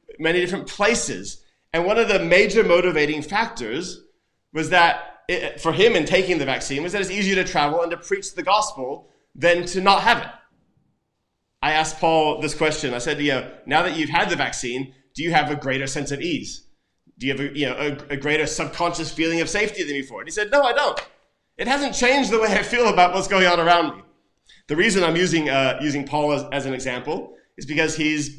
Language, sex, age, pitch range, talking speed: English, male, 30-49, 145-195 Hz, 220 wpm